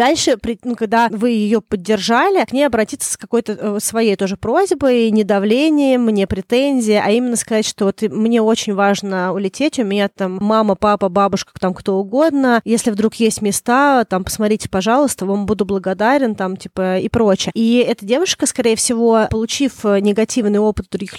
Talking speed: 165 wpm